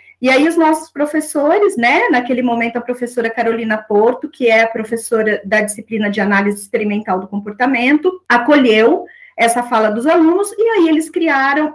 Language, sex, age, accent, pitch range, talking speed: Portuguese, female, 40-59, Brazilian, 225-300 Hz, 165 wpm